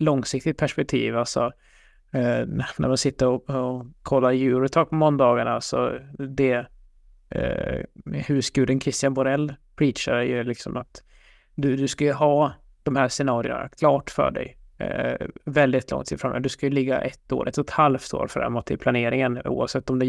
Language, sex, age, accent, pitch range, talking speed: Swedish, male, 20-39, native, 125-140 Hz, 170 wpm